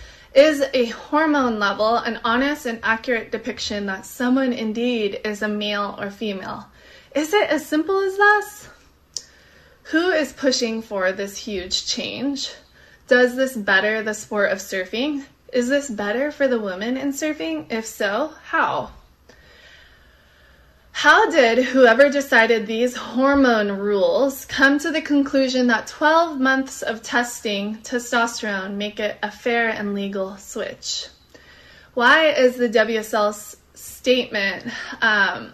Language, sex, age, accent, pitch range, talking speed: English, female, 20-39, American, 215-260 Hz, 130 wpm